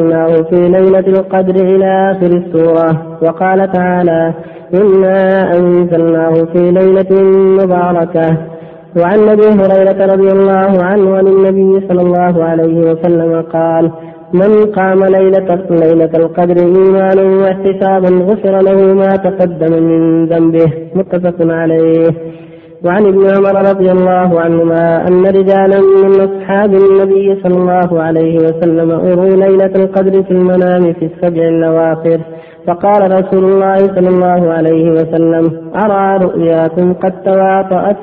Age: 30-49